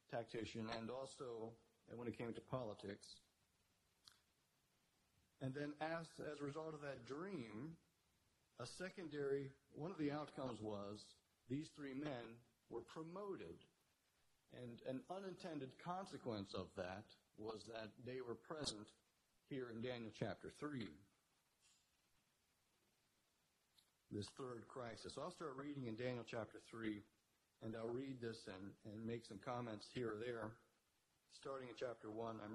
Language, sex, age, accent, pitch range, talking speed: English, male, 50-69, American, 110-135 Hz, 135 wpm